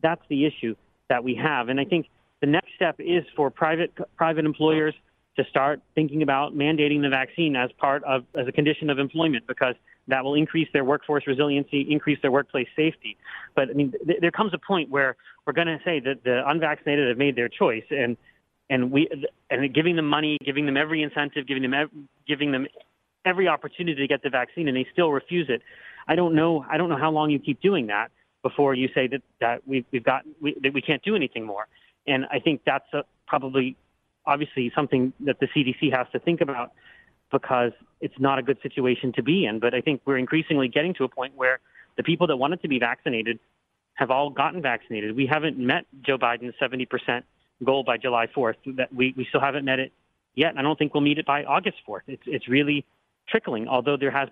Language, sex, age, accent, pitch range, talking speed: English, male, 30-49, American, 130-155 Hz, 210 wpm